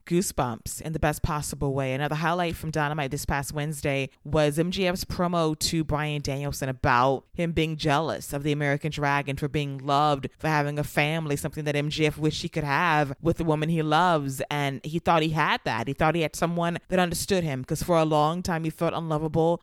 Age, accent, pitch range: 20-39, American, 145-165 Hz